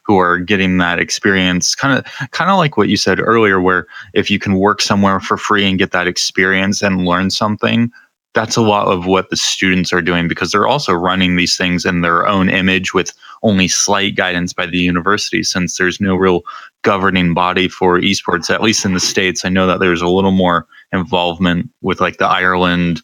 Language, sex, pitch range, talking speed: English, male, 90-95 Hz, 210 wpm